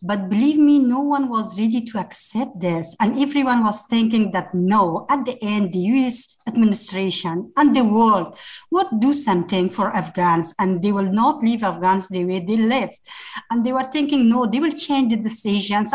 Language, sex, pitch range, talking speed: English, female, 210-290 Hz, 190 wpm